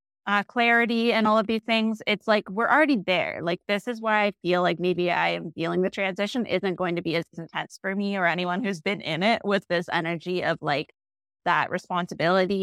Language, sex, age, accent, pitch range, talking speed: English, female, 20-39, American, 175-220 Hz, 220 wpm